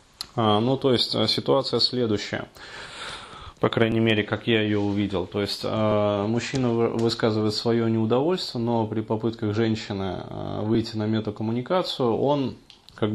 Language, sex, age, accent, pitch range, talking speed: Russian, male, 20-39, native, 105-120 Hz, 125 wpm